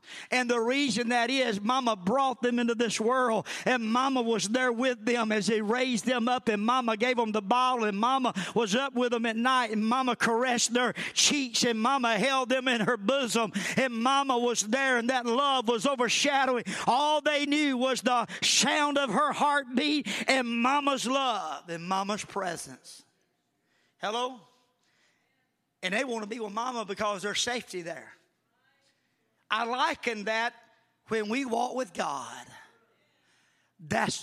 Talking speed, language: 165 wpm, English